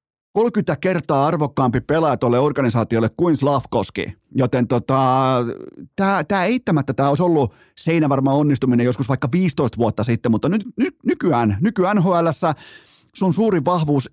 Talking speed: 130 wpm